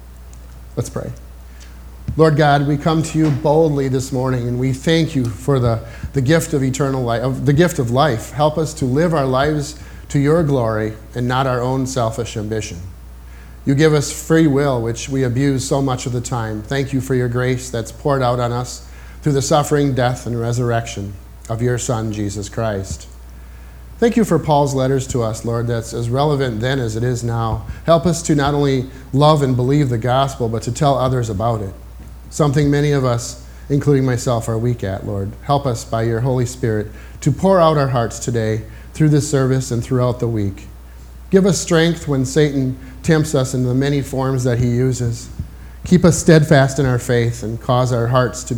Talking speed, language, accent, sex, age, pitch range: 200 wpm, English, American, male, 40-59, 115-140 Hz